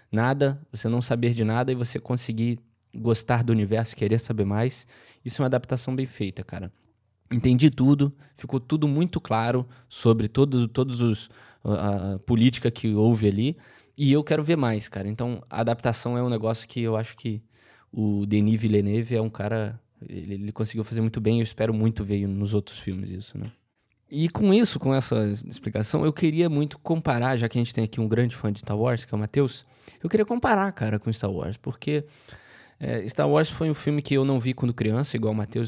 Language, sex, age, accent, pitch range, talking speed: Portuguese, male, 20-39, Brazilian, 110-135 Hz, 210 wpm